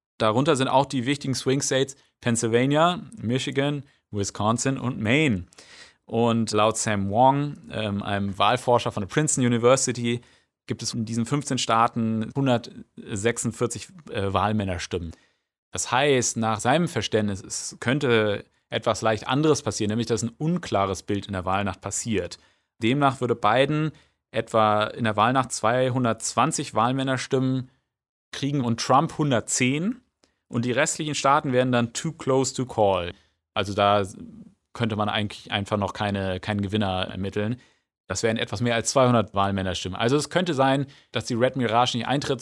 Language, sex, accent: German, male, German